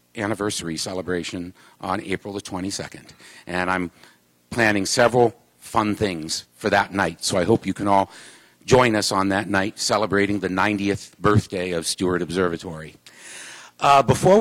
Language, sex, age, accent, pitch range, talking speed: English, male, 50-69, American, 100-125 Hz, 145 wpm